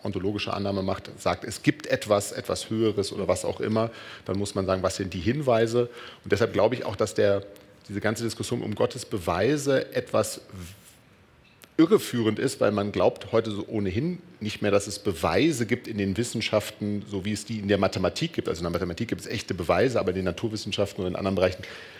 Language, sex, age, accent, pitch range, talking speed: German, male, 40-59, German, 100-115 Hz, 205 wpm